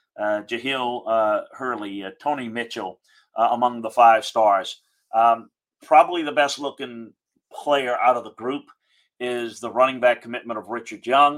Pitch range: 115-140 Hz